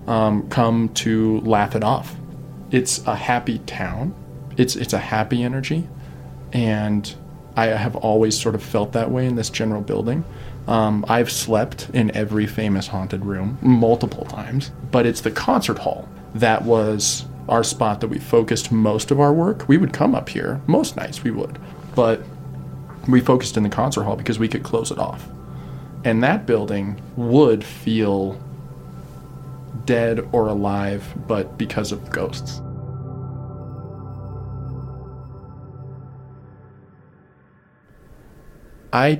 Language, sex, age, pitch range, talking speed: English, male, 20-39, 105-130 Hz, 135 wpm